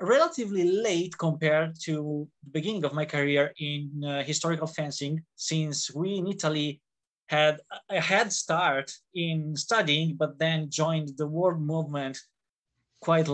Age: 20-39